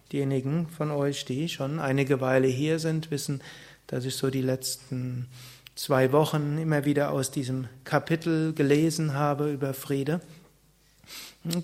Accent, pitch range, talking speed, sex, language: German, 140-160 Hz, 140 wpm, male, German